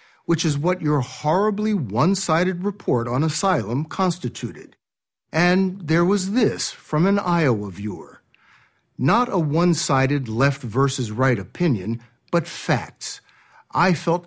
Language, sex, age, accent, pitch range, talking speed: English, male, 60-79, American, 130-175 Hz, 115 wpm